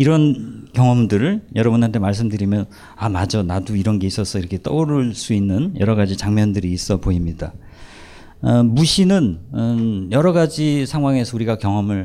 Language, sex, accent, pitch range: Korean, male, native, 90-125 Hz